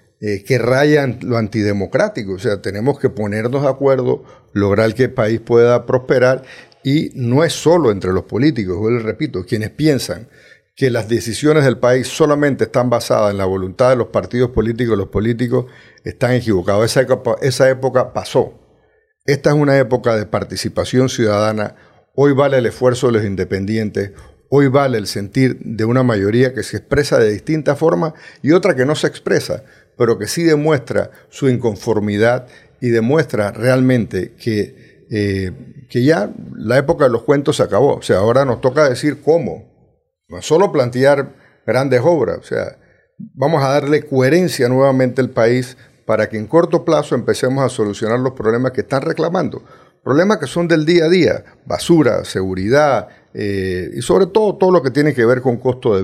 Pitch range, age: 110-140 Hz, 50-69